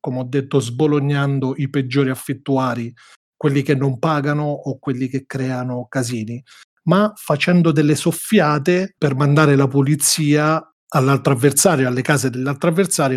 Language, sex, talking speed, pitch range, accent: Italian, male, 135 wpm, 130-155 Hz, native